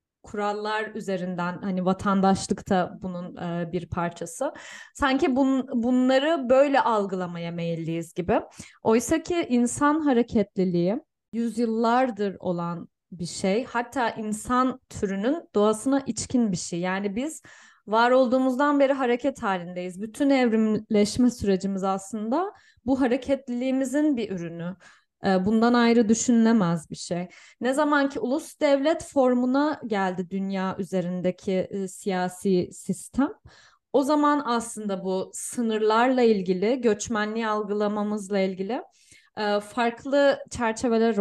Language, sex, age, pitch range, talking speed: Turkish, female, 10-29, 185-245 Hz, 105 wpm